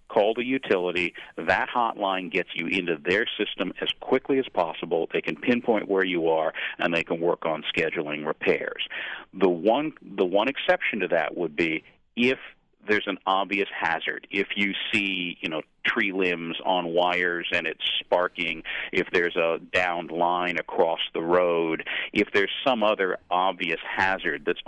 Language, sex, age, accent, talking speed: English, male, 50-69, American, 165 wpm